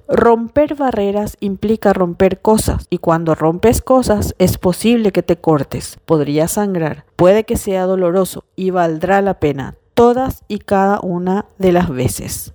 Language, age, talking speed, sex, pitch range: Spanish, 40-59, 150 wpm, female, 175-215 Hz